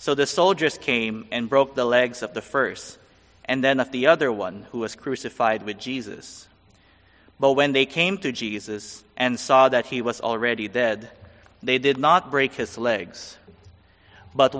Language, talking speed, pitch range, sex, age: English, 175 wpm, 105-130 Hz, male, 20-39